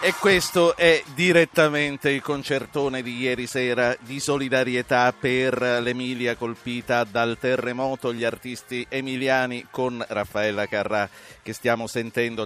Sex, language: male, Italian